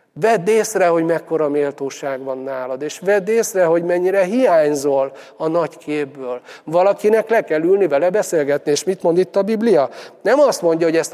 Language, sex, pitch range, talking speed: Hungarian, male, 145-175 Hz, 180 wpm